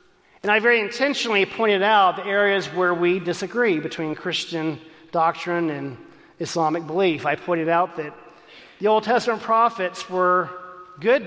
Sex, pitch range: male, 155-200 Hz